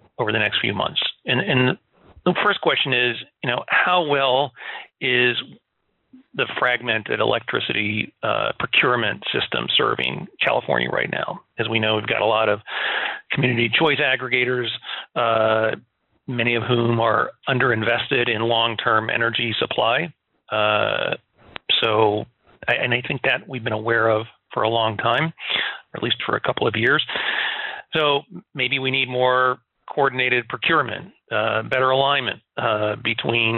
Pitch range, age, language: 115-145 Hz, 40-59, English